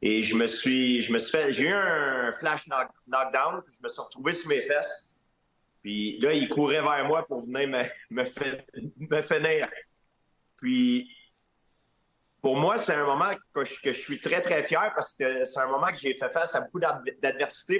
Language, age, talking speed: French, 40-59, 200 wpm